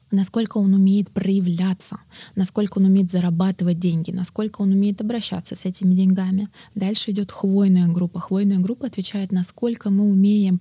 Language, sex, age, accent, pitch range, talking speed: Russian, female, 20-39, native, 175-205 Hz, 145 wpm